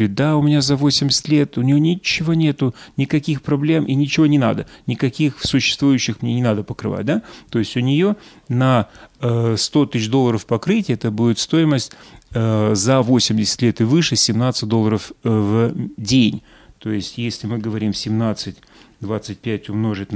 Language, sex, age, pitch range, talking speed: Russian, male, 30-49, 105-130 Hz, 150 wpm